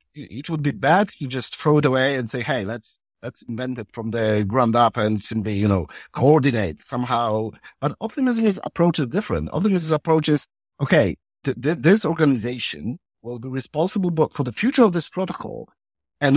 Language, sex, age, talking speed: English, male, 50-69, 185 wpm